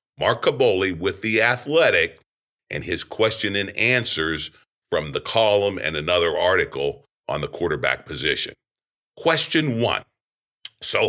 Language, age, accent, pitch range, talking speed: English, 50-69, American, 105-160 Hz, 125 wpm